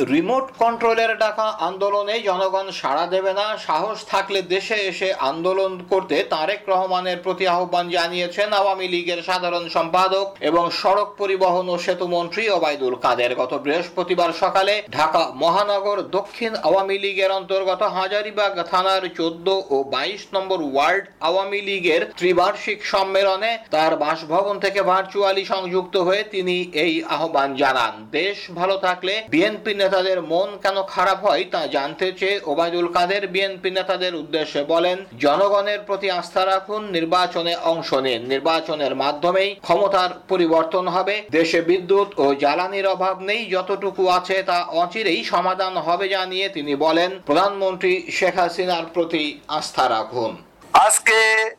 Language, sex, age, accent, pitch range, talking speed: Bengali, male, 50-69, native, 175-205 Hz, 90 wpm